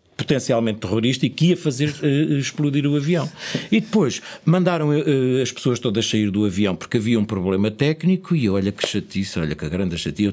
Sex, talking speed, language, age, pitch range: male, 190 wpm, Portuguese, 50-69, 100-145 Hz